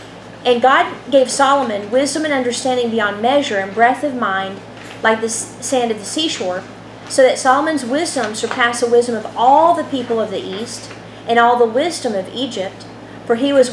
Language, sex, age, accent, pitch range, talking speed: English, female, 40-59, American, 225-275 Hz, 185 wpm